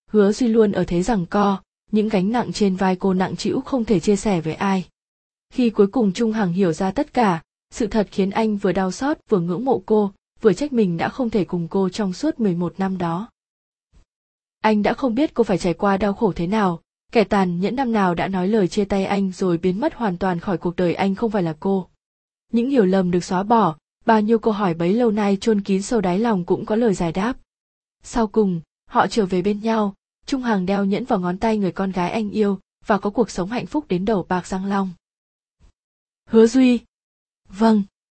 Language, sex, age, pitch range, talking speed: Vietnamese, female, 20-39, 185-225 Hz, 230 wpm